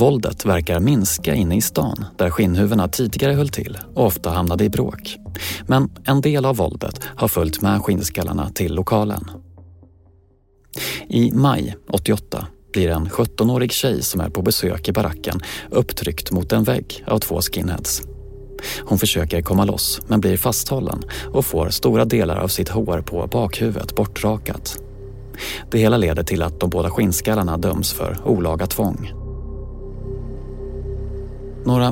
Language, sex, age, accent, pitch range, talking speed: Swedish, male, 30-49, native, 85-125 Hz, 145 wpm